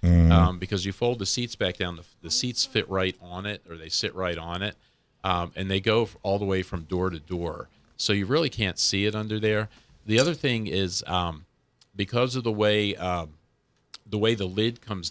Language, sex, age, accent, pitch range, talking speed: English, male, 40-59, American, 85-105 Hz, 220 wpm